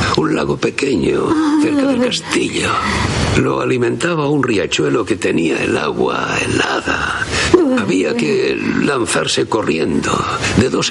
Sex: male